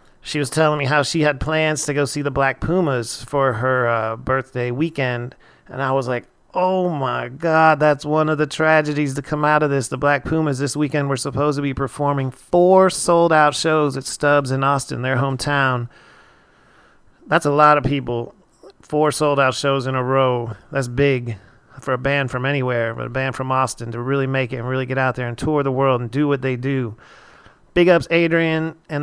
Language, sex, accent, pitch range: English, male, American, 130-155 Hz